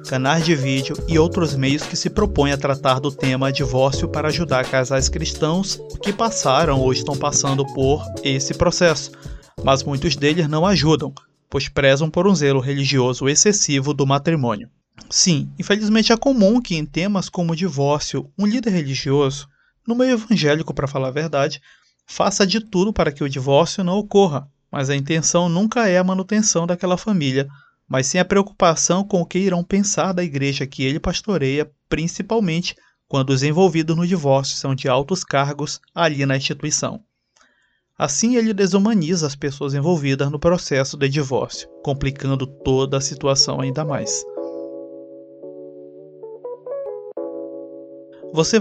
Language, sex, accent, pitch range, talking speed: Portuguese, male, Brazilian, 135-180 Hz, 150 wpm